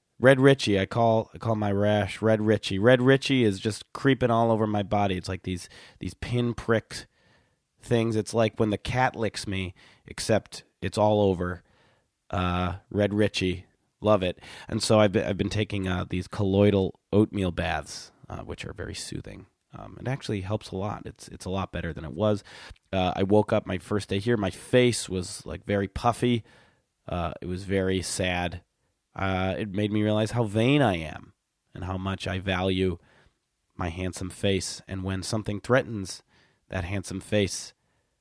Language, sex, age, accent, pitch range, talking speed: English, male, 30-49, American, 90-110 Hz, 180 wpm